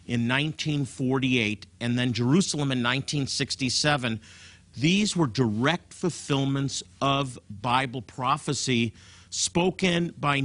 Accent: American